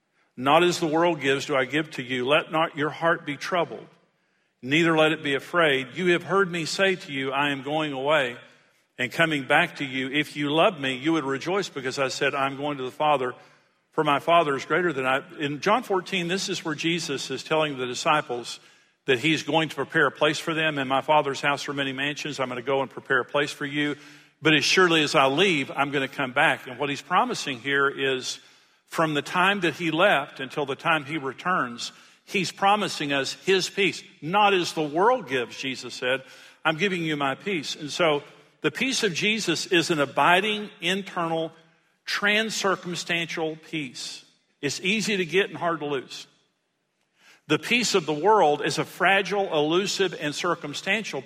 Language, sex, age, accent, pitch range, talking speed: English, male, 50-69, American, 140-175 Hz, 200 wpm